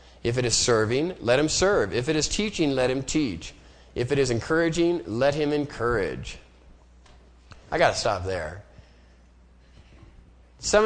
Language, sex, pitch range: English, male, 85-135 Hz